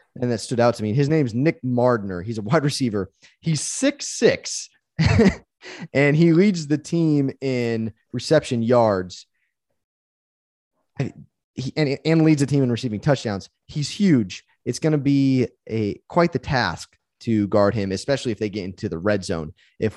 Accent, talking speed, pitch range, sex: American, 170 wpm, 105-135 Hz, male